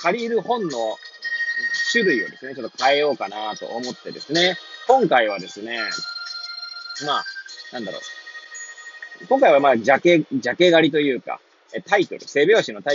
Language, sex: Japanese, male